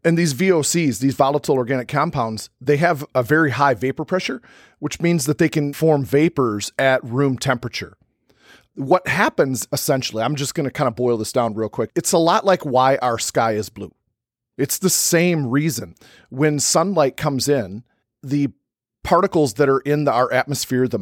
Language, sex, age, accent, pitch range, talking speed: English, male, 40-59, American, 115-145 Hz, 180 wpm